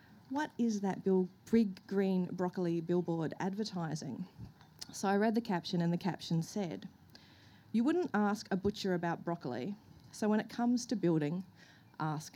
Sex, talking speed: female, 150 wpm